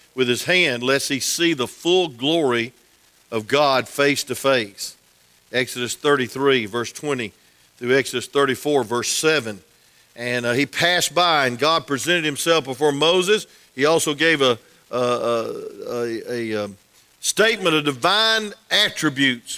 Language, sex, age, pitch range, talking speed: English, male, 50-69, 125-170 Hz, 140 wpm